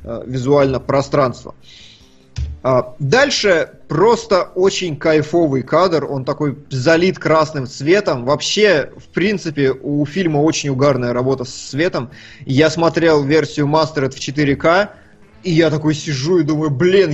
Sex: male